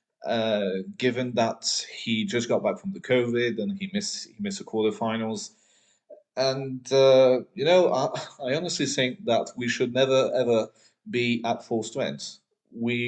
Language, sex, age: English, male, 30-49